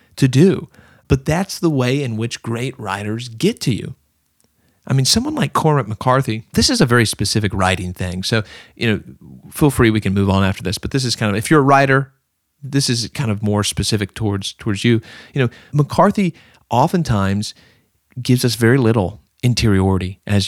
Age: 40-59